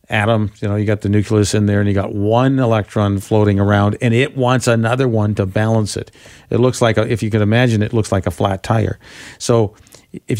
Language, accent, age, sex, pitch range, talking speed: English, American, 50-69, male, 100-120 Hz, 225 wpm